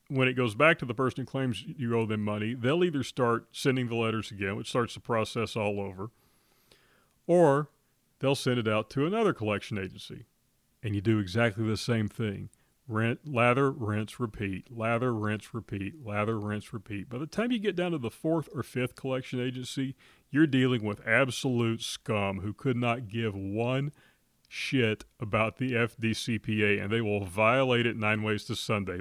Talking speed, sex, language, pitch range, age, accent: 180 wpm, male, English, 105-130 Hz, 40-59, American